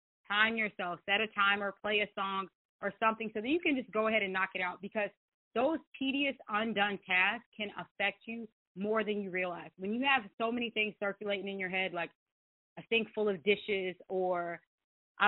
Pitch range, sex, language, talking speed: 180-220 Hz, female, English, 200 wpm